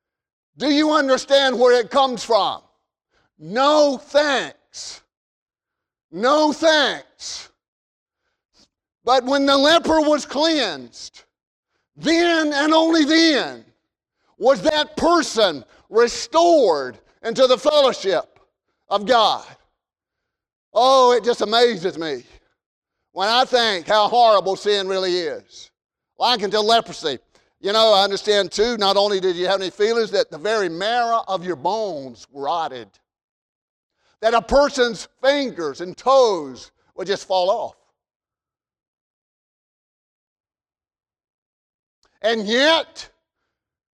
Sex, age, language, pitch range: male, 50-69, English, 225-315 Hz